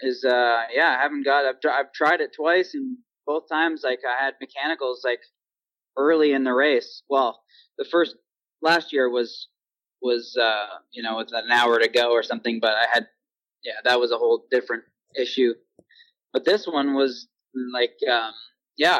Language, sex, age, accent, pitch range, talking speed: English, male, 20-39, American, 120-165 Hz, 180 wpm